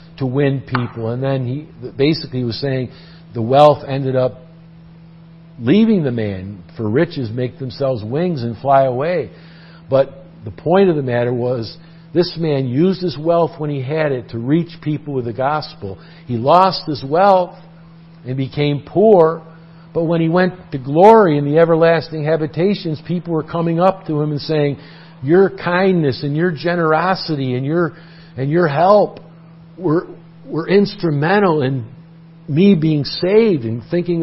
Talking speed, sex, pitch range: 155 wpm, male, 135-170 Hz